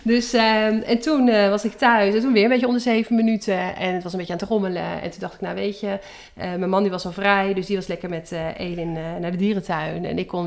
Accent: Dutch